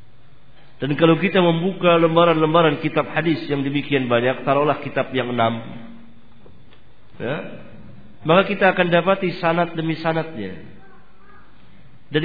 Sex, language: male, Swahili